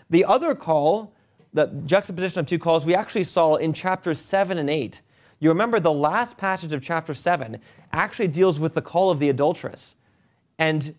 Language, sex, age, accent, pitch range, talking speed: English, male, 30-49, American, 145-185 Hz, 180 wpm